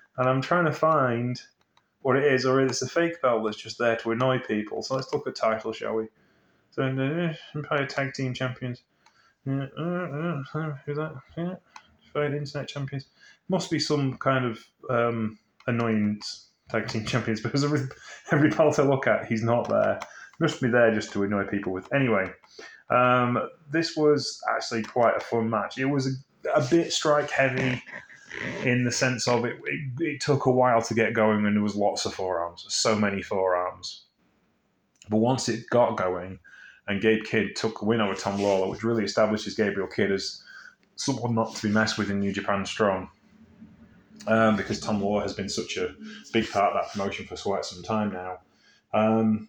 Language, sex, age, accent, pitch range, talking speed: English, male, 20-39, British, 110-140 Hz, 190 wpm